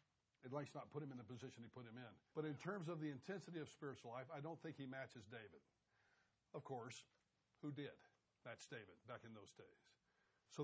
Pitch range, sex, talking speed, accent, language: 135-170 Hz, male, 220 wpm, American, English